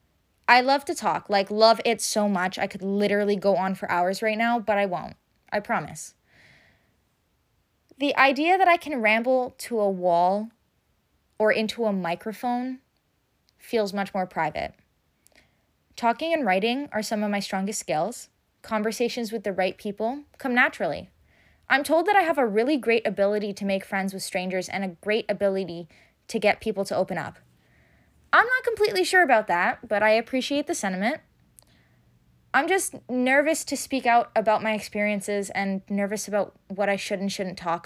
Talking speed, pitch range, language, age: 175 wpm, 175-245 Hz, English, 10-29